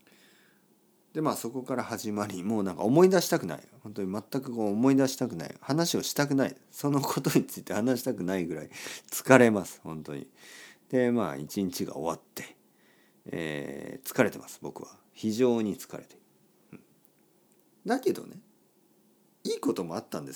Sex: male